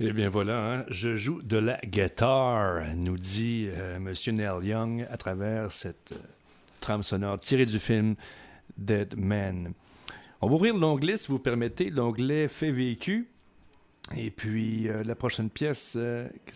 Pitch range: 90-115 Hz